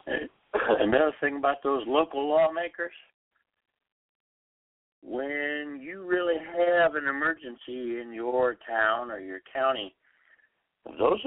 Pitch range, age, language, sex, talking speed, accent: 120-170 Hz, 60-79, English, male, 100 wpm, American